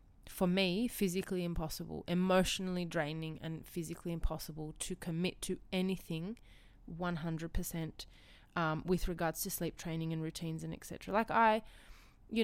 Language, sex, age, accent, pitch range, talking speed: English, female, 20-39, Australian, 165-195 Hz, 130 wpm